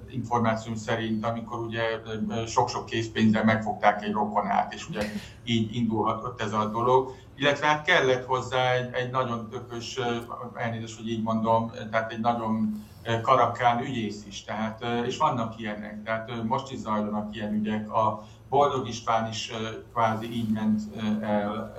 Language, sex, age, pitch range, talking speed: Hungarian, male, 50-69, 105-120 Hz, 145 wpm